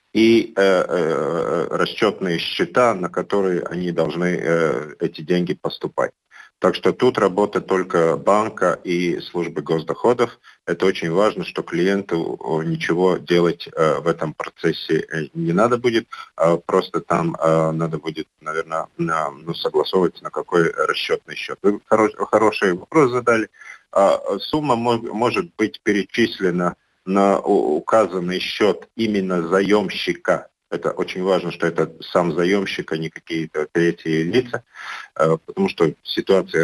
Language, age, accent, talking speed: Russian, 50-69, native, 135 wpm